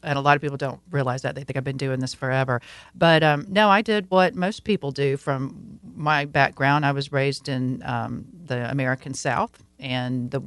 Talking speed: 210 wpm